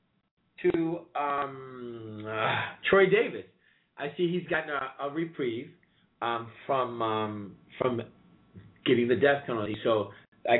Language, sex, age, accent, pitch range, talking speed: English, male, 40-59, American, 110-155 Hz, 125 wpm